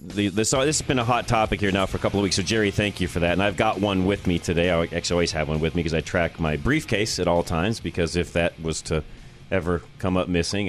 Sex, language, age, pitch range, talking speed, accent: male, English, 40-59, 85-100 Hz, 300 wpm, American